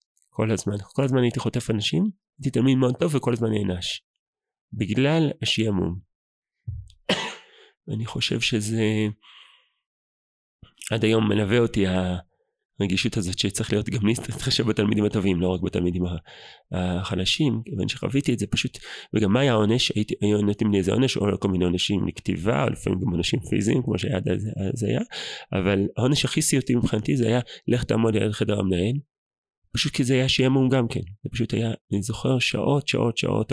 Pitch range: 95-120 Hz